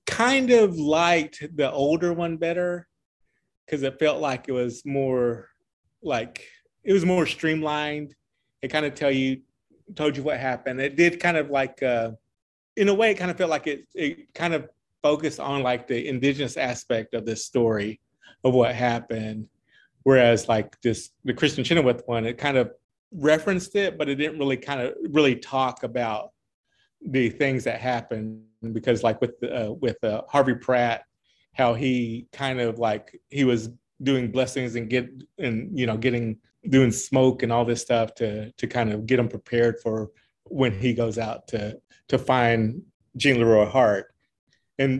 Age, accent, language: 30-49, American, English